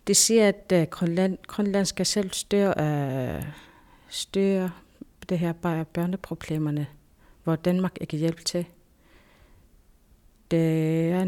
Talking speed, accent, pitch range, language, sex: 105 wpm, native, 155-185 Hz, Danish, female